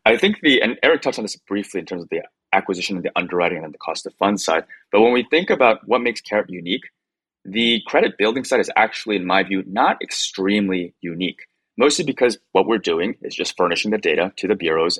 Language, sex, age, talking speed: English, male, 30-49, 230 wpm